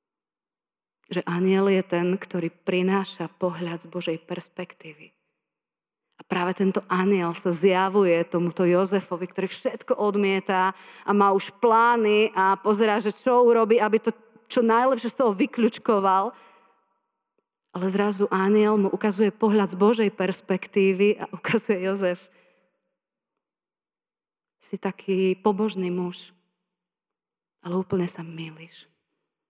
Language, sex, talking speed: Slovak, female, 115 wpm